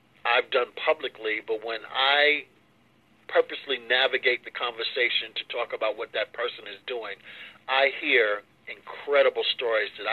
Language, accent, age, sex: English, American, 50-69, male